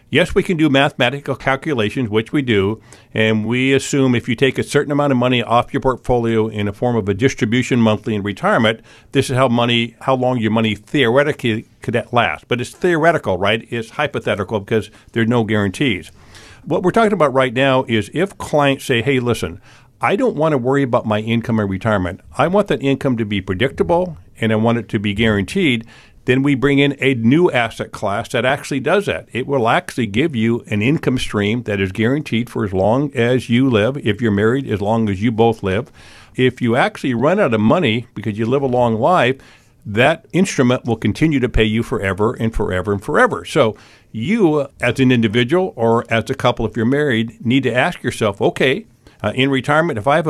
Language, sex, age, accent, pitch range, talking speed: English, male, 50-69, American, 110-135 Hz, 210 wpm